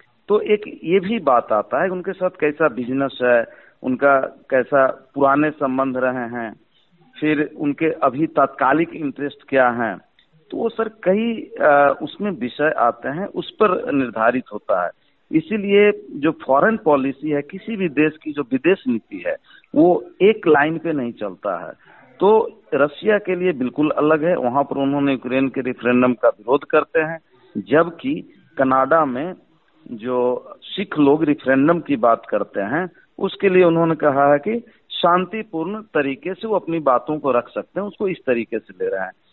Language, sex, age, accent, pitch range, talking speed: Hindi, male, 50-69, native, 135-185 Hz, 165 wpm